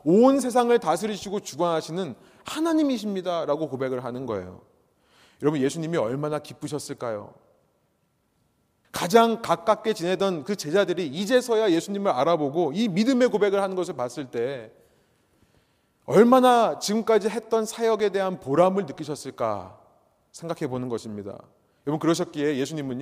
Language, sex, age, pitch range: Korean, male, 30-49, 140-200 Hz